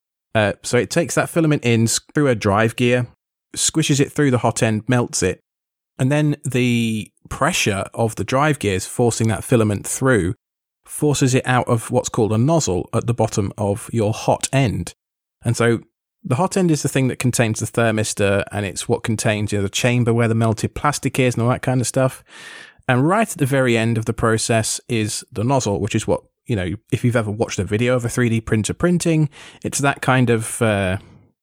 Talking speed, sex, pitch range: 205 wpm, male, 110-135 Hz